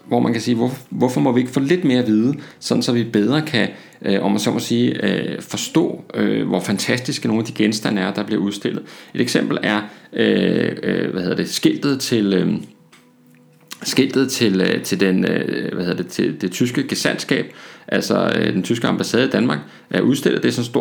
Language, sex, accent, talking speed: Danish, male, native, 210 wpm